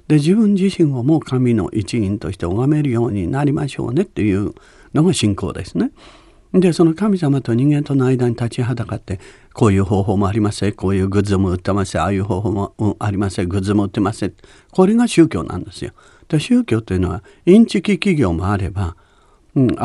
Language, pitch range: Japanese, 100-160 Hz